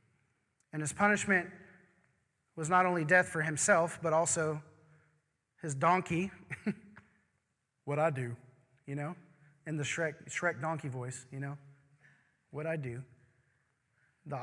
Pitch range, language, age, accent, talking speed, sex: 140-165 Hz, English, 20-39, American, 125 wpm, male